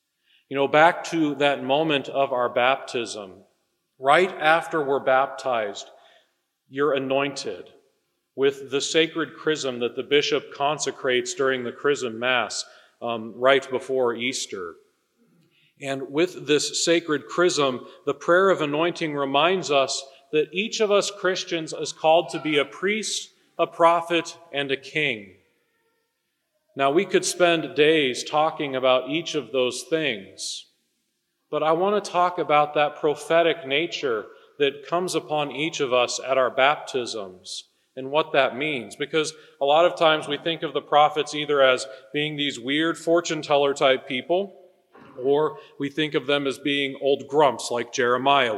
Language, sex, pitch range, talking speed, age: English, male, 135-170 Hz, 150 wpm, 40-59